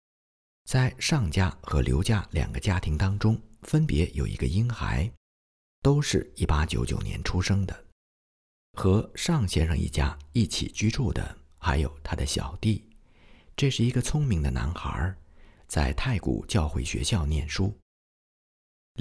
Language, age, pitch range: Chinese, 50-69, 75-110 Hz